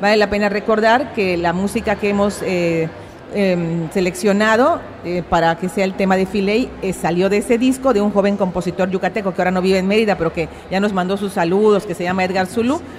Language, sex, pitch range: Spanish, female, 180-225 Hz